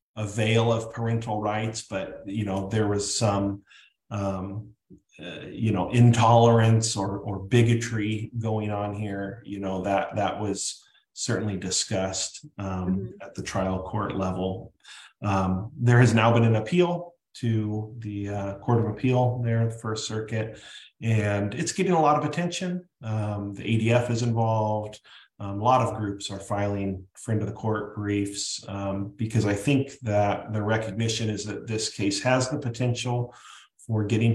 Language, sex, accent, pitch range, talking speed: English, male, American, 100-115 Hz, 160 wpm